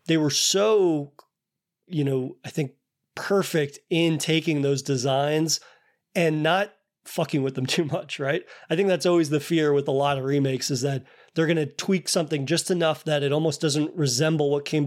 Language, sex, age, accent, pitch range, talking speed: English, male, 30-49, American, 140-165 Hz, 190 wpm